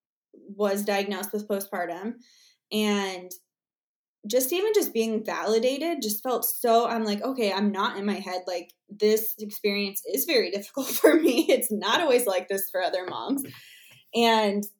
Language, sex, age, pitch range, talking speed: English, female, 20-39, 195-230 Hz, 155 wpm